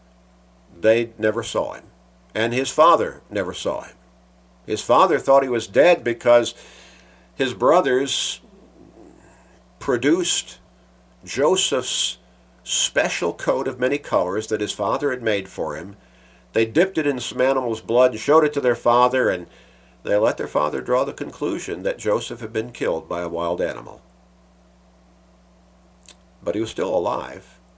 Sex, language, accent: male, English, American